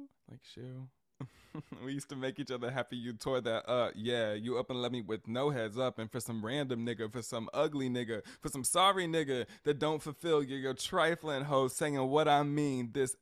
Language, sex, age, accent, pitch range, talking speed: English, male, 20-39, American, 100-130 Hz, 215 wpm